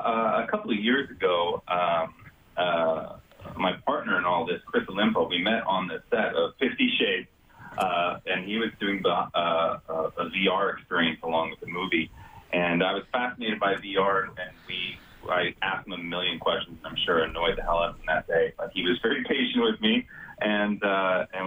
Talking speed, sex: 205 wpm, male